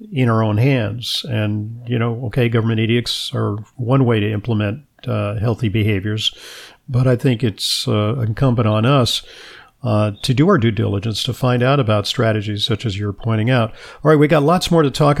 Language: English